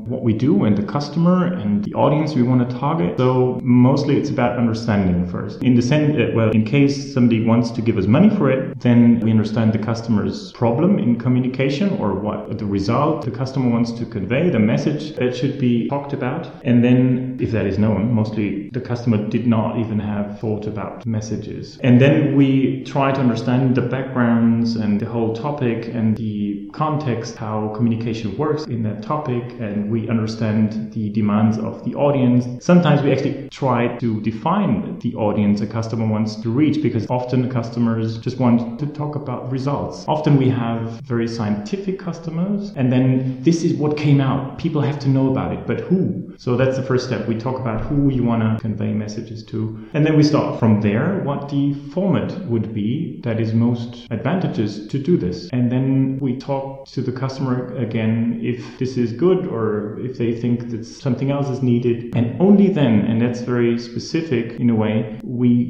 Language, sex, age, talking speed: English, male, 30-49, 190 wpm